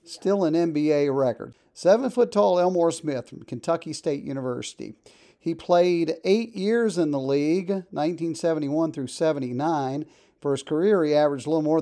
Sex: male